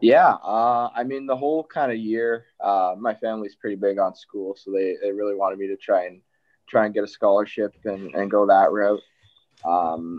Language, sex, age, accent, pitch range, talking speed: English, male, 20-39, American, 95-110 Hz, 210 wpm